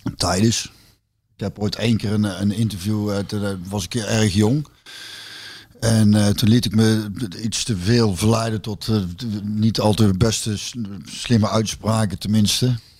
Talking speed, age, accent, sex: 175 wpm, 50-69, Dutch, male